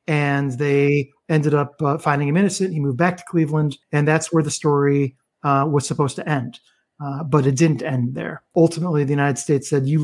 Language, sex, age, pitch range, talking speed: English, male, 40-59, 140-165 Hz, 210 wpm